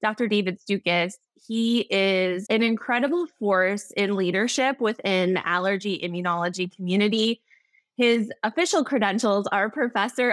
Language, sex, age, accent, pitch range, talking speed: English, female, 20-39, American, 185-240 Hz, 115 wpm